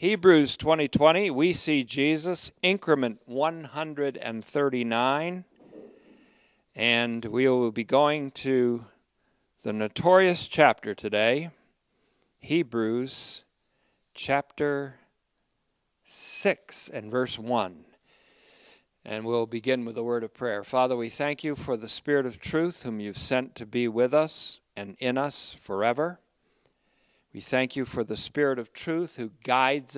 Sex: male